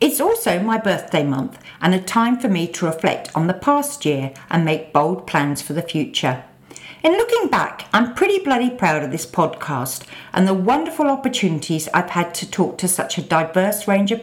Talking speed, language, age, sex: 200 wpm, English, 50-69, female